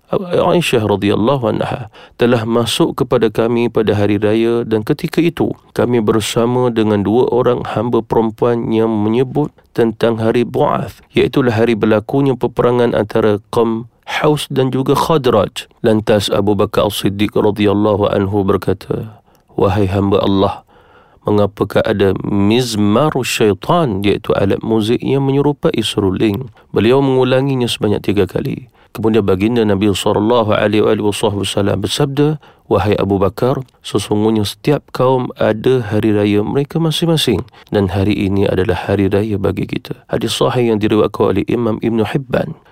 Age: 40-59